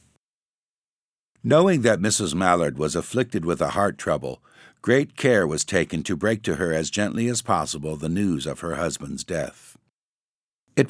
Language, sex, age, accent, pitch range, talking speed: English, male, 60-79, American, 85-105 Hz, 160 wpm